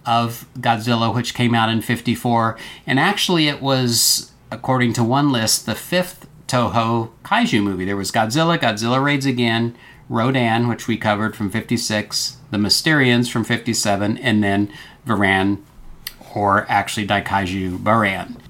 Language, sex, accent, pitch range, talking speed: English, male, American, 110-140 Hz, 140 wpm